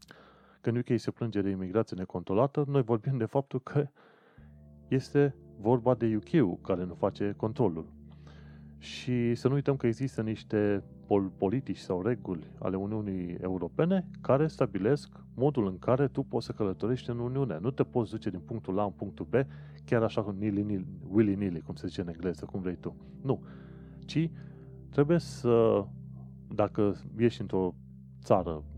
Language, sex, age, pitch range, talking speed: Romanian, male, 30-49, 90-135 Hz, 155 wpm